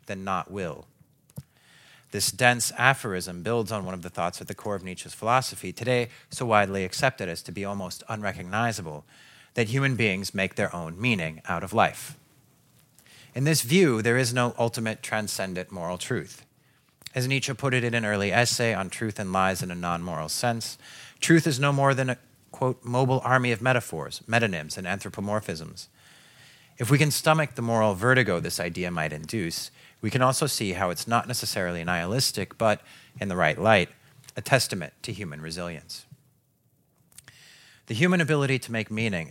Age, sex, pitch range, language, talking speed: 30-49, male, 100-130 Hz, Swedish, 170 wpm